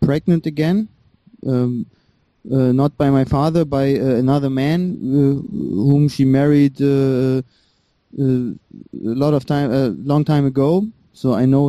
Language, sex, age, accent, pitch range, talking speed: English, male, 20-39, German, 130-160 Hz, 150 wpm